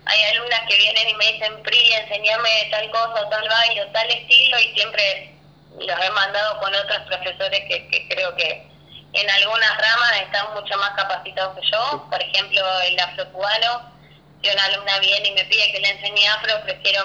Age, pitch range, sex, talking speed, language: 20-39, 190-235 Hz, female, 185 wpm, Spanish